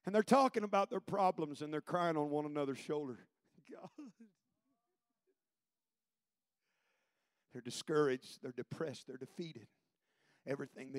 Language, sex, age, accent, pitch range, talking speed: English, male, 40-59, American, 115-170 Hz, 115 wpm